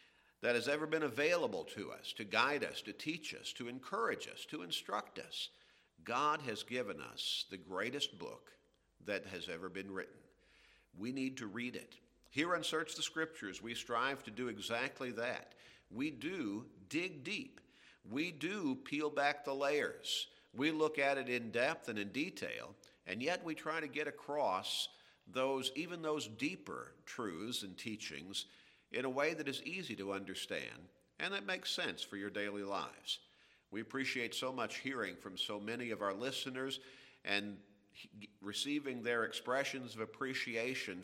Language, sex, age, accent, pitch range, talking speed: English, male, 50-69, American, 100-145 Hz, 165 wpm